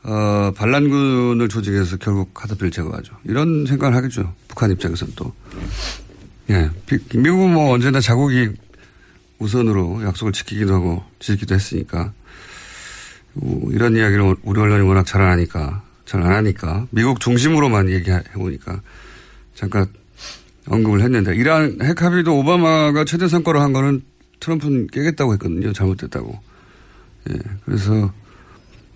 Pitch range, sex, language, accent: 95-140 Hz, male, Korean, native